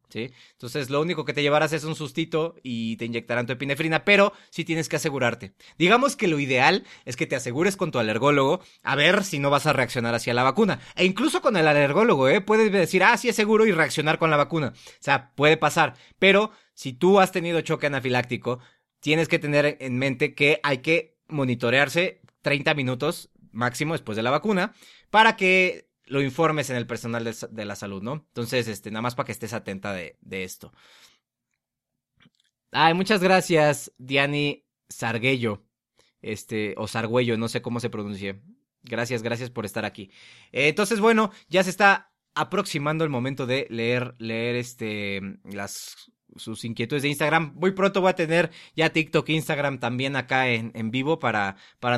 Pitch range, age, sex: 120-170 Hz, 30-49, male